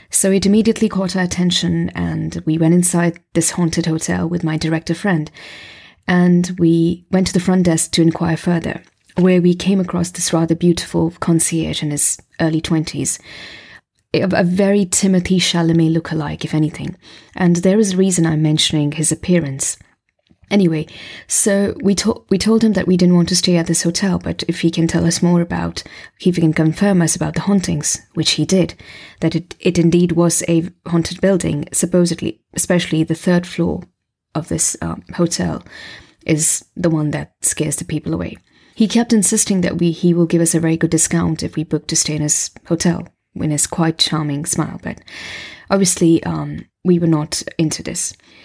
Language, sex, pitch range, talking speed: English, female, 160-180 Hz, 185 wpm